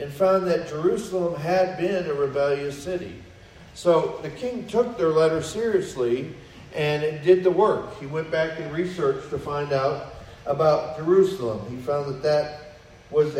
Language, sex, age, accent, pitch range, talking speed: English, male, 40-59, American, 135-185 Hz, 155 wpm